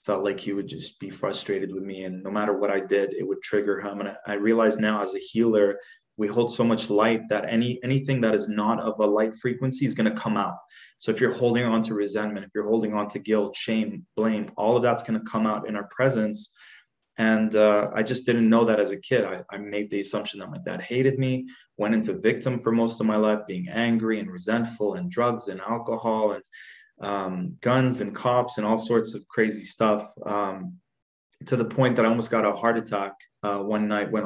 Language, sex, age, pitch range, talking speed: English, male, 20-39, 100-115 Hz, 235 wpm